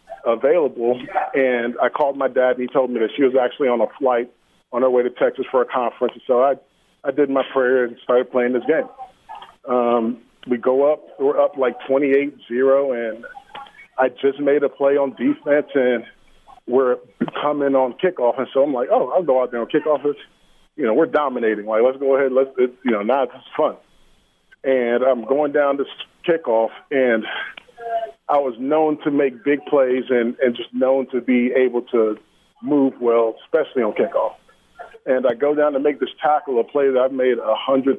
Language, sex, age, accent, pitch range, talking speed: English, male, 40-59, American, 120-145 Hz, 205 wpm